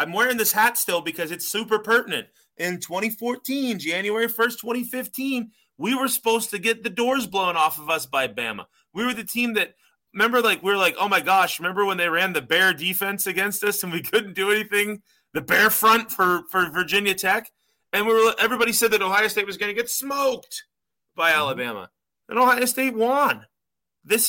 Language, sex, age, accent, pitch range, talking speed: English, male, 30-49, American, 175-245 Hz, 200 wpm